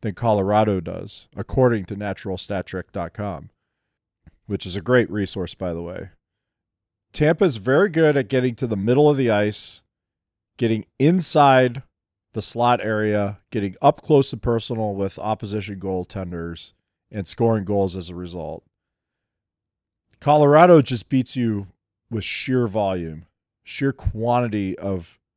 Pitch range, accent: 95-120 Hz, American